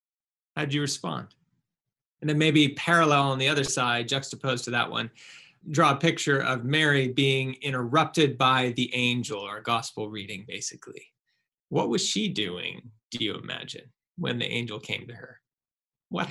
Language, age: English, 20-39